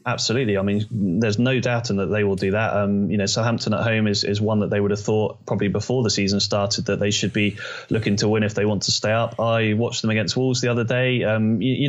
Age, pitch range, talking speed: 30-49, 110-125 Hz, 280 wpm